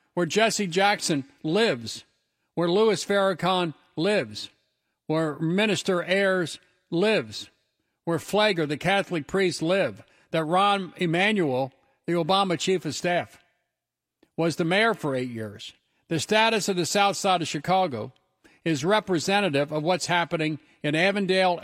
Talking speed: 130 wpm